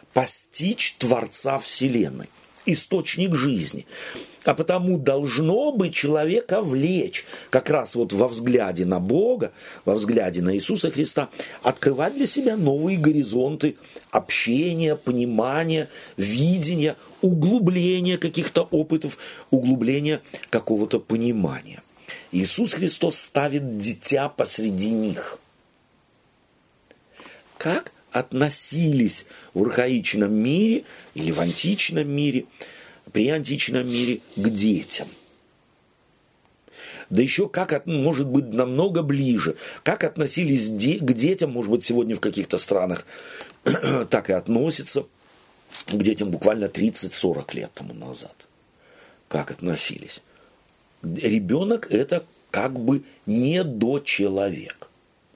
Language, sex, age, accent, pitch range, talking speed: Russian, male, 50-69, native, 120-170 Hz, 105 wpm